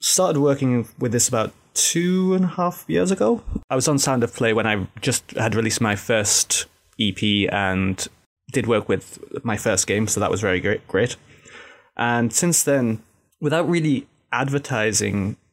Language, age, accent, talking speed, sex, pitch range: English, 20-39, British, 165 wpm, male, 105-125 Hz